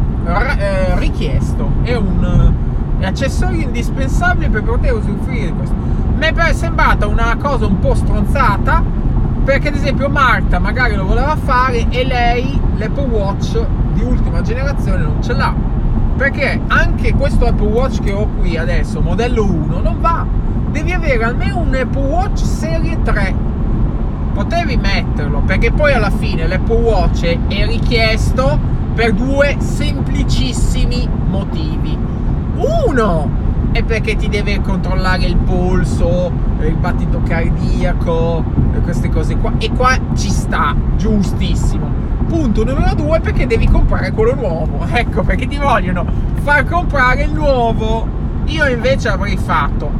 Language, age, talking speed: Italian, 30-49, 135 wpm